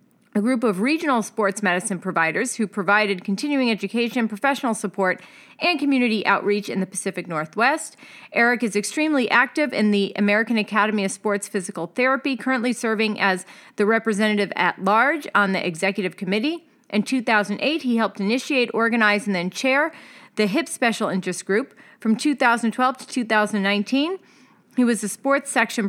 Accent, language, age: American, English, 40-59